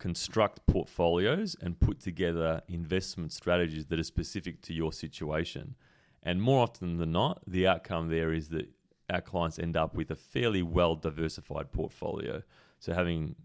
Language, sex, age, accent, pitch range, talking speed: English, male, 30-49, Australian, 80-95 Hz, 155 wpm